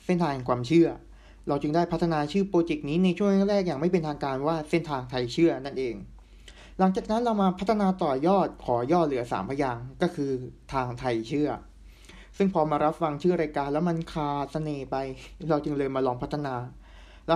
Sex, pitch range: male, 135-180 Hz